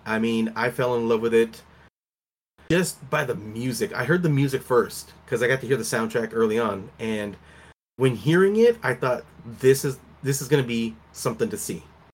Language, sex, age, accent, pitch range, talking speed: English, male, 30-49, American, 110-140 Hz, 205 wpm